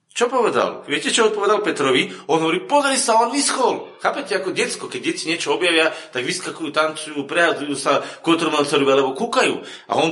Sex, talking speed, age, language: male, 180 wpm, 40-59, Slovak